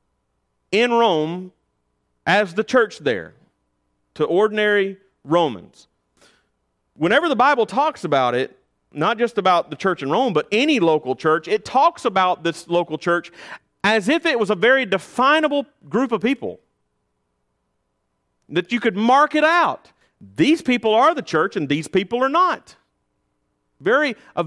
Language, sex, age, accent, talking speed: English, male, 40-59, American, 145 wpm